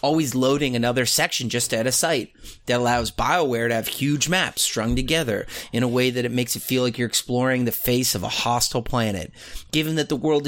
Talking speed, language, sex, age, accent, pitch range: 225 wpm, English, male, 30-49, American, 115-140 Hz